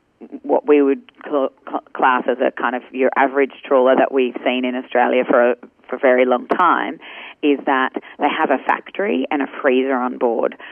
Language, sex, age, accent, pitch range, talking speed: English, female, 30-49, Australian, 125-140 Hz, 185 wpm